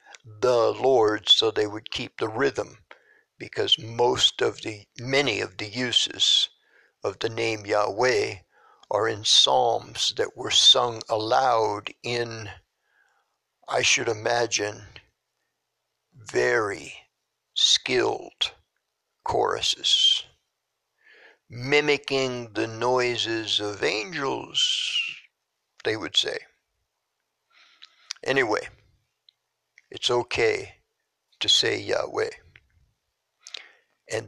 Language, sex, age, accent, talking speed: English, male, 60-79, American, 85 wpm